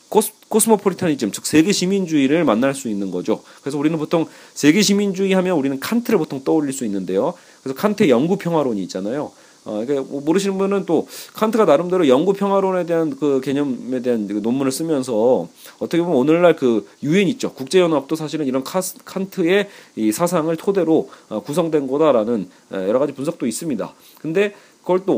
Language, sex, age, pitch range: Korean, male, 40-59, 135-190 Hz